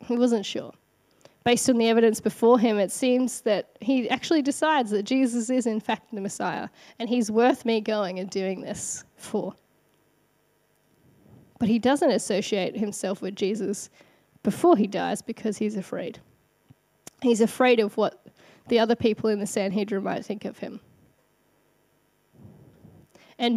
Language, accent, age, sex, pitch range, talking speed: English, Australian, 10-29, female, 210-255 Hz, 150 wpm